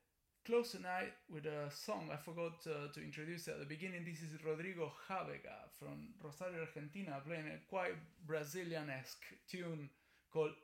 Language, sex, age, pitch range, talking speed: English, male, 20-39, 140-170 Hz, 145 wpm